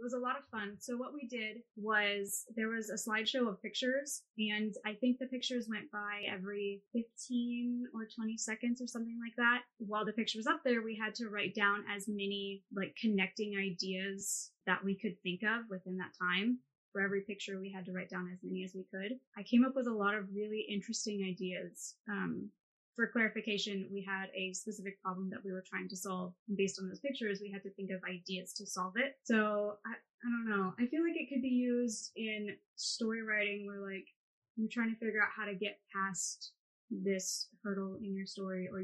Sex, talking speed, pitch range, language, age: female, 215 wpm, 190-230 Hz, English, 10-29